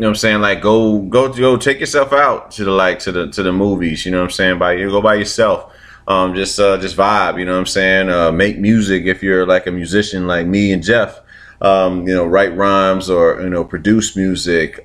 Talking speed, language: 250 wpm, English